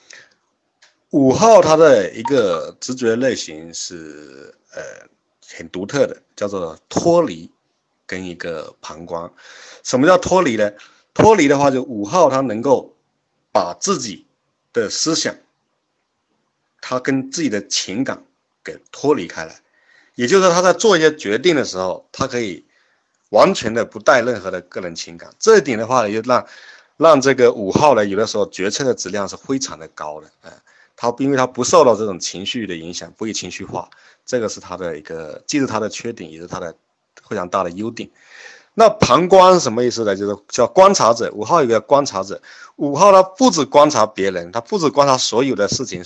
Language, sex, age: Chinese, male, 50-69